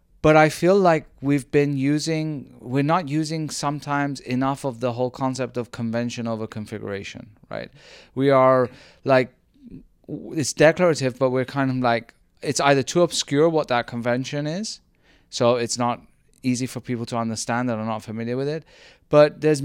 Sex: male